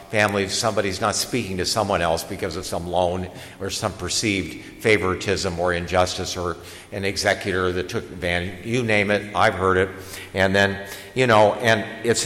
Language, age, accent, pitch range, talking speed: English, 50-69, American, 90-115 Hz, 170 wpm